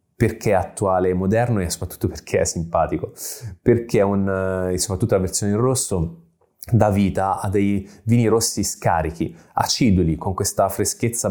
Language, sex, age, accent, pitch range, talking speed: Italian, male, 20-39, native, 90-110 Hz, 155 wpm